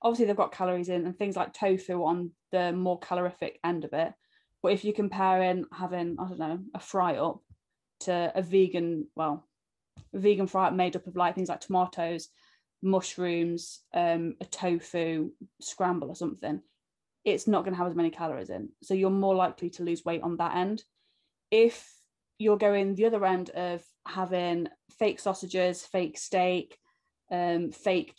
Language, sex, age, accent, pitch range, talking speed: English, female, 20-39, British, 170-195 Hz, 175 wpm